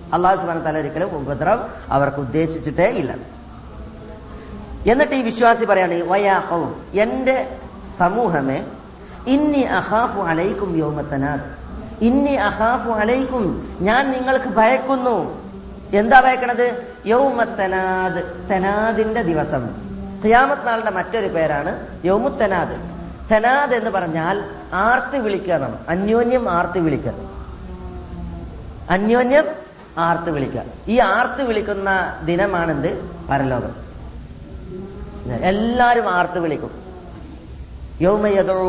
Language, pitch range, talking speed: Malayalam, 140-220 Hz, 65 wpm